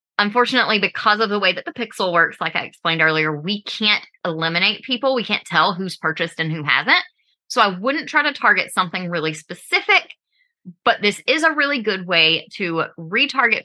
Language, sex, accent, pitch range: English, female, American, 170-265 Hz